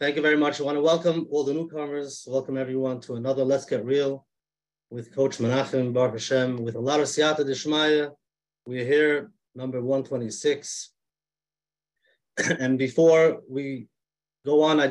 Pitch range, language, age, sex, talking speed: 125-150 Hz, English, 30-49, male, 155 wpm